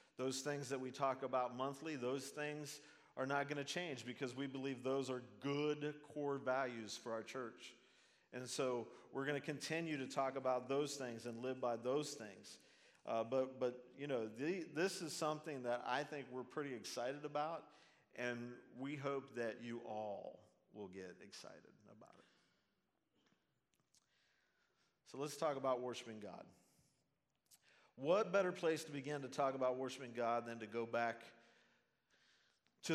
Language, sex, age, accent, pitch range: Japanese, male, 50-69, American, 120-145 Hz